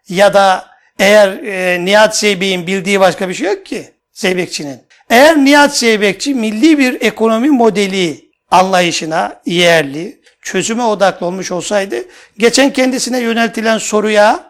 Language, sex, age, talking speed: Turkish, male, 60-79, 125 wpm